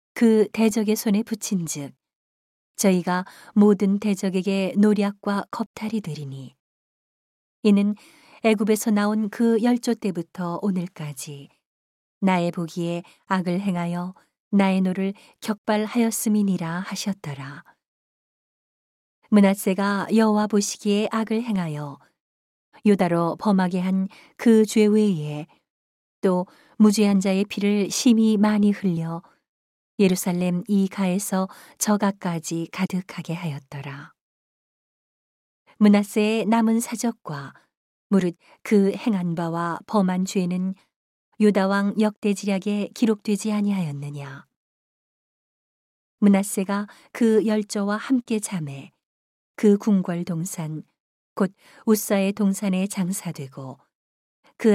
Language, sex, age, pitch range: Korean, female, 40-59, 175-215 Hz